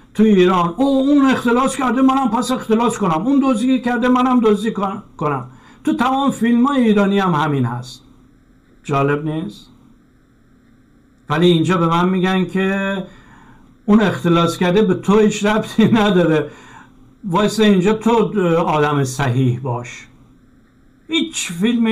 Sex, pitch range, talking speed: male, 135-205 Hz, 130 wpm